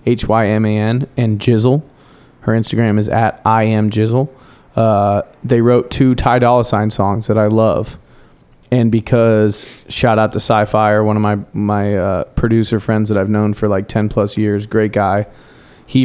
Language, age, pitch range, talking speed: English, 20-39, 105-125 Hz, 185 wpm